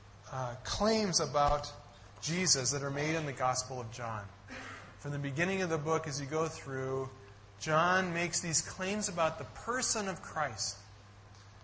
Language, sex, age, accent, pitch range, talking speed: English, male, 30-49, American, 105-165 Hz, 155 wpm